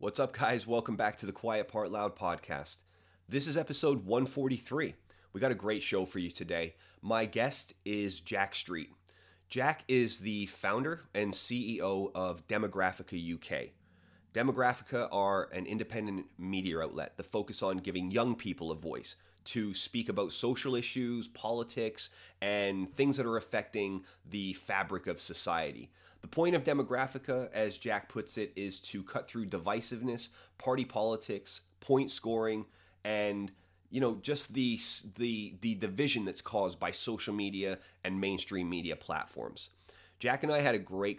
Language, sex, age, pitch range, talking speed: English, male, 30-49, 95-115 Hz, 155 wpm